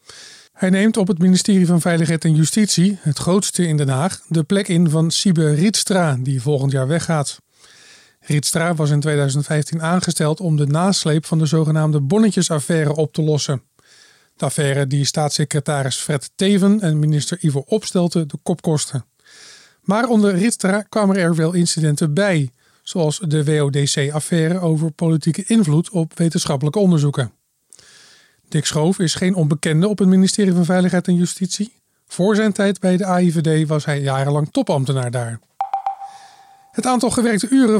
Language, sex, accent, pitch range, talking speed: Dutch, male, Dutch, 150-190 Hz, 155 wpm